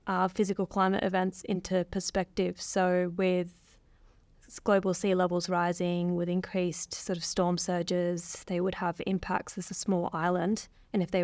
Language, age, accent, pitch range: English, 20-39, Australian, 180-195 Hz